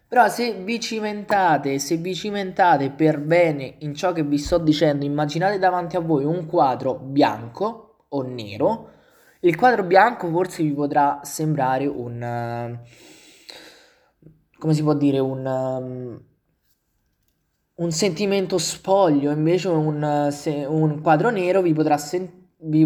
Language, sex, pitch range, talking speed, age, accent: Italian, male, 145-195 Hz, 125 wpm, 20-39, native